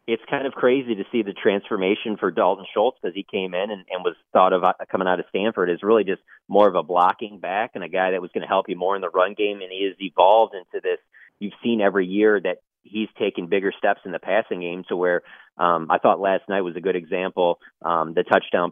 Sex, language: male, English